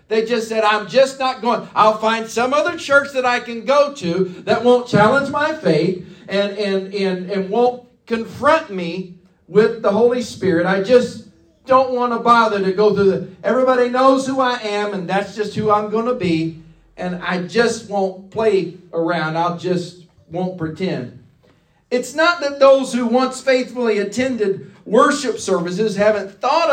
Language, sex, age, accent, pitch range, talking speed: English, male, 40-59, American, 185-250 Hz, 175 wpm